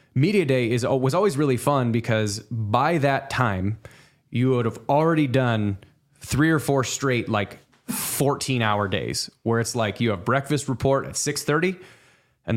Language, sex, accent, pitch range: English, male, American, 115-135 Hz